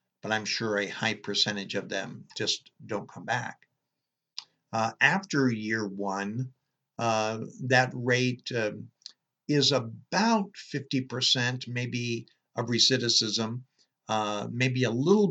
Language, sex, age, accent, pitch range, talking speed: English, male, 60-79, American, 110-130 Hz, 115 wpm